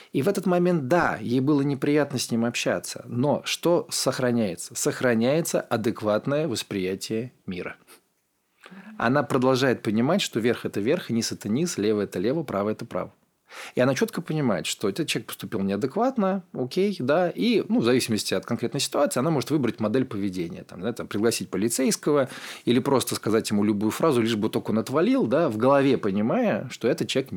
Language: Russian